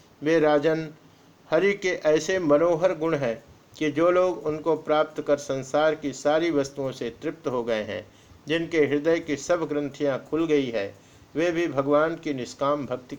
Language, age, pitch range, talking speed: Hindi, 50-69, 145-165 Hz, 170 wpm